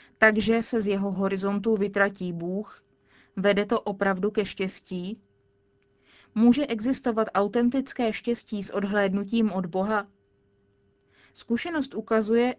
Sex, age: female, 20-39